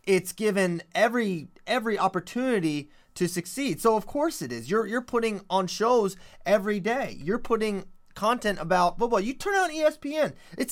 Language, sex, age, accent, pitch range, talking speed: English, male, 30-49, American, 175-225 Hz, 160 wpm